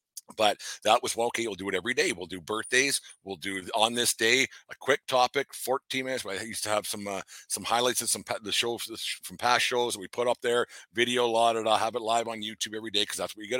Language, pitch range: English, 100-115 Hz